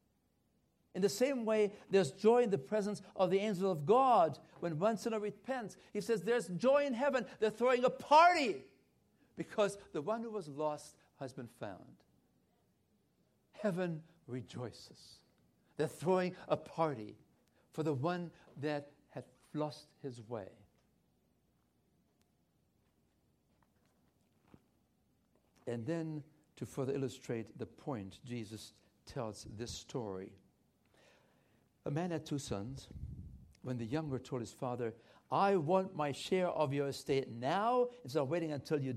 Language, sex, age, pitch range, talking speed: English, male, 60-79, 135-200 Hz, 130 wpm